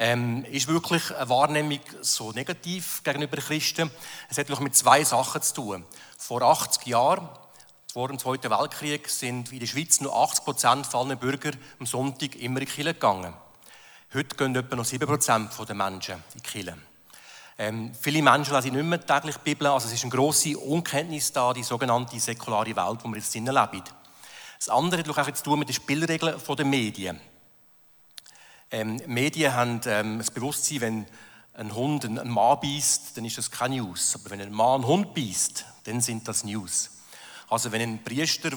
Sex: male